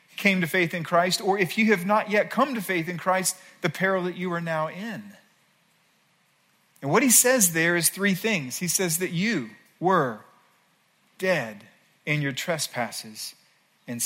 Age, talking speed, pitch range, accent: 40-59, 175 wpm, 165-205 Hz, American